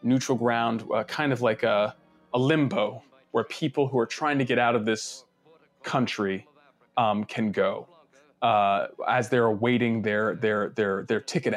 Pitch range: 115-140 Hz